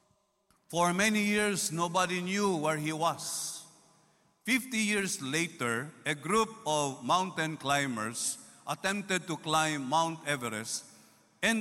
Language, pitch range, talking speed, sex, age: English, 165-220 Hz, 115 wpm, male, 50-69